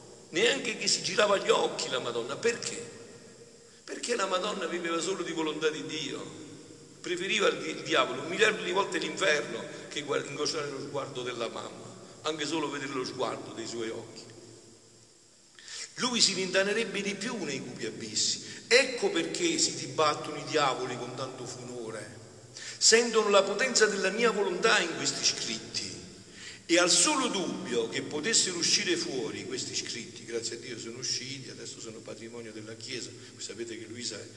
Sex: male